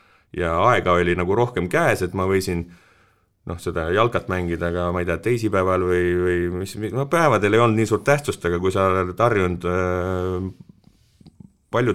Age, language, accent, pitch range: 30-49, English, Finnish, 80-95 Hz